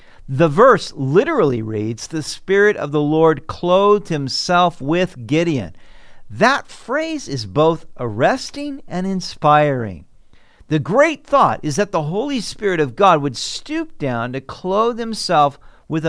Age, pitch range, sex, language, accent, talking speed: 50-69, 135-205 Hz, male, English, American, 140 wpm